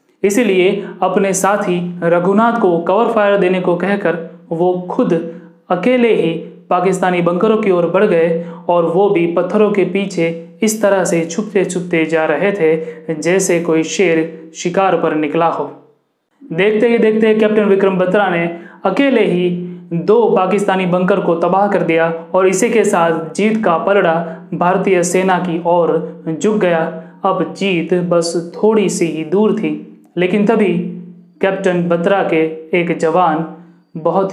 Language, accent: Hindi, native